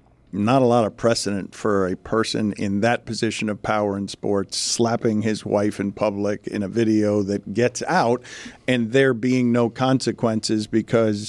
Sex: male